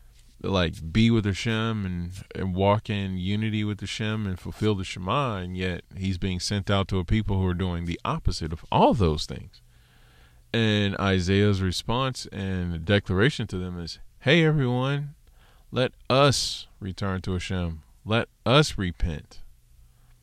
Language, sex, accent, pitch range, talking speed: English, male, American, 90-110 Hz, 150 wpm